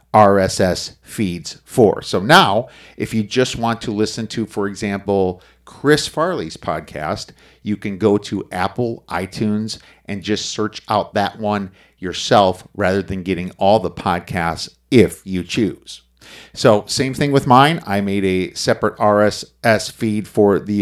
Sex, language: male, English